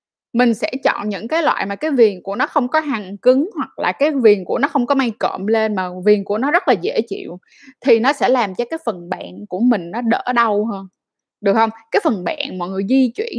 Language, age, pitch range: Vietnamese, 10-29, 215-280 Hz